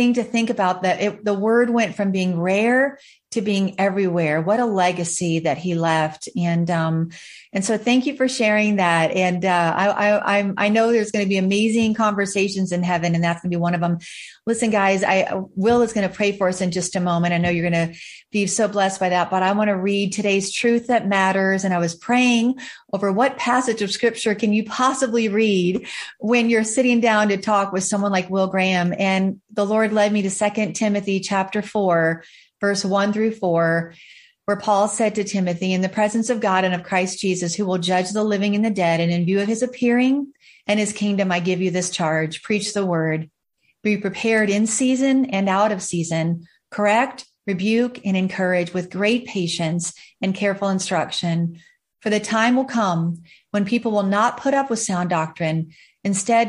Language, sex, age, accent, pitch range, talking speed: English, female, 40-59, American, 180-220 Hz, 205 wpm